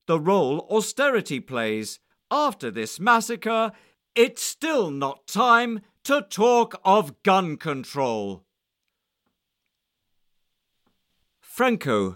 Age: 50-69